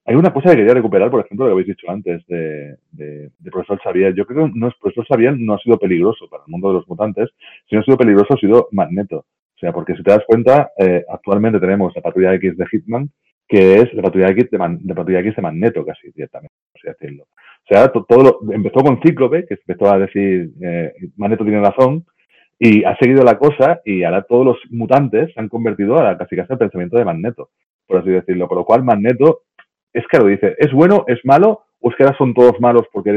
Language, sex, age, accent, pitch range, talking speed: Spanish, male, 30-49, Spanish, 95-125 Hz, 245 wpm